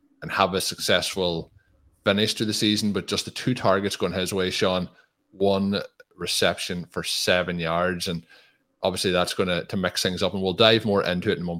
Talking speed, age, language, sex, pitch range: 200 wpm, 30-49, English, male, 85-95 Hz